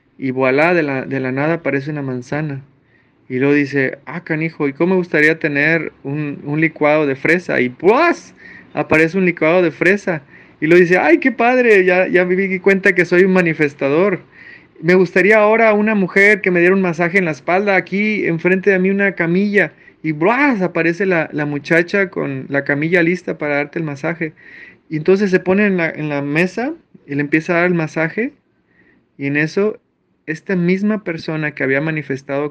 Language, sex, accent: Spanish, male, Mexican